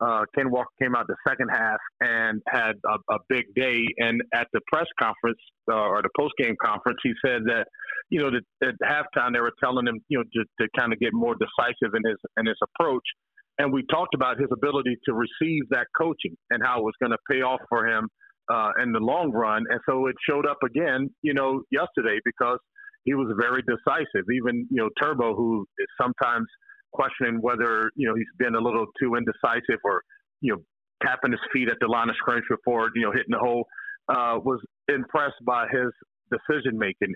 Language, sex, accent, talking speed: English, male, American, 210 wpm